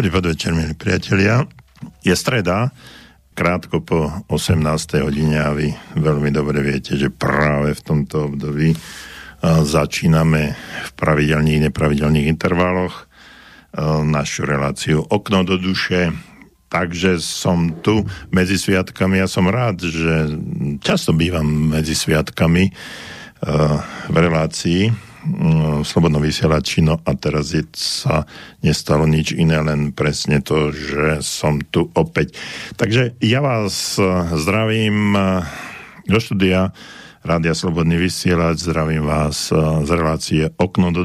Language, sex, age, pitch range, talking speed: Slovak, male, 50-69, 75-90 Hz, 115 wpm